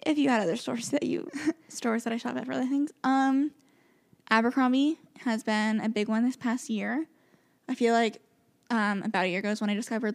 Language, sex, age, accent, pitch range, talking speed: English, female, 10-29, American, 215-260 Hz, 220 wpm